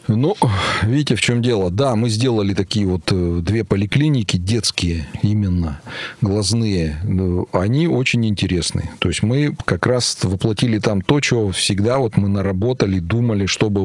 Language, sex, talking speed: Russian, male, 145 wpm